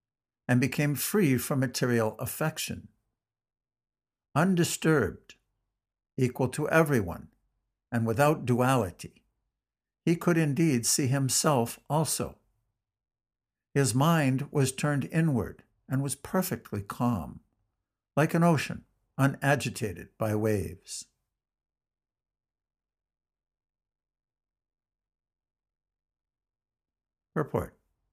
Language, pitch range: English, 105-140 Hz